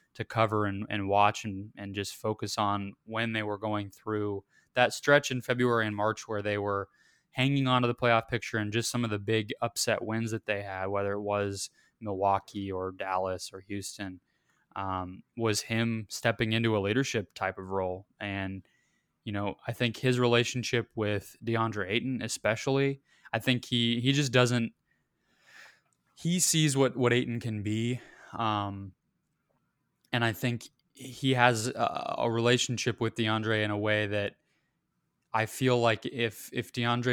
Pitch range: 100-120 Hz